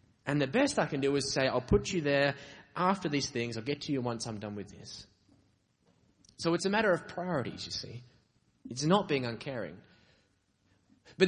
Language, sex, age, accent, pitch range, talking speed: English, male, 20-39, Australian, 110-150 Hz, 195 wpm